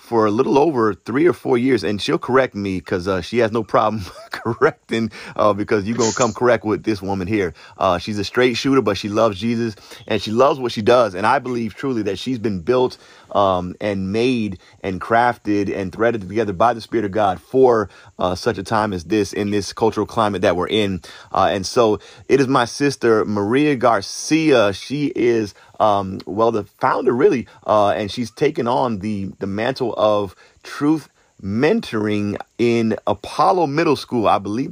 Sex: male